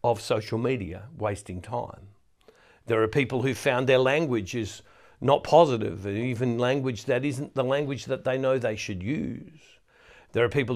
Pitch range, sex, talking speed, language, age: 115-150 Hz, male, 165 wpm, English, 60-79